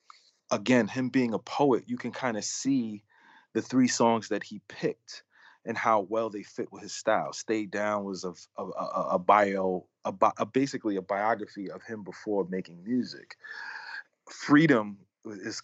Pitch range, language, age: 95-115 Hz, English, 40-59